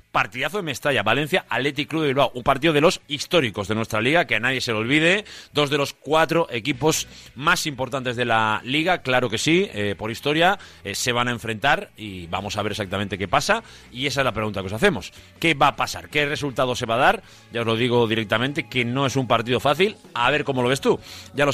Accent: Spanish